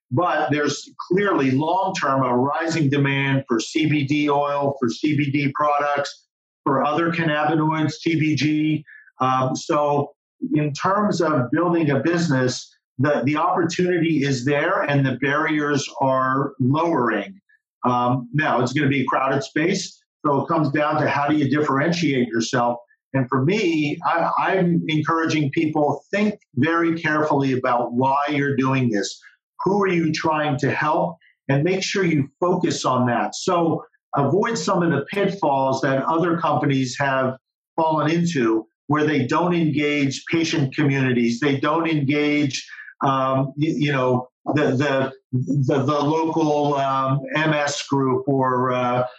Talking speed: 135 wpm